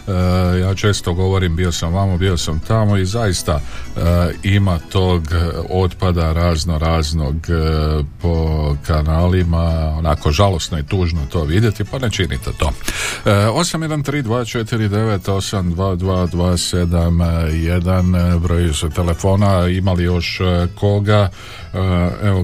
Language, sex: Croatian, male